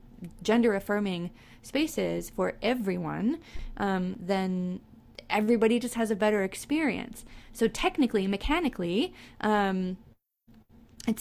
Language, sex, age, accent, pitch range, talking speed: English, female, 20-39, American, 170-215 Hz, 95 wpm